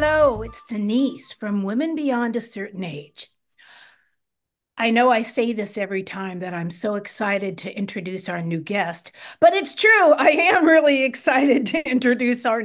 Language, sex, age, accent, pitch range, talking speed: English, female, 50-69, American, 210-300 Hz, 165 wpm